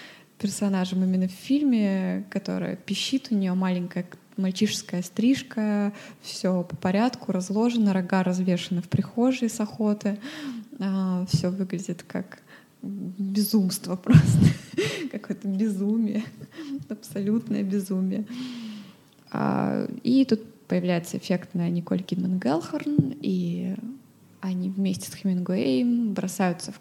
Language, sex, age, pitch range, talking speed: Russian, female, 20-39, 185-220 Hz, 100 wpm